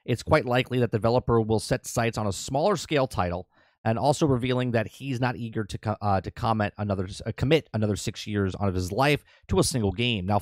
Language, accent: English, American